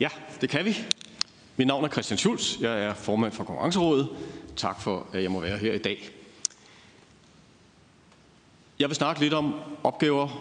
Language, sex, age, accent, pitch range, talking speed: Danish, male, 40-59, native, 115-155 Hz, 165 wpm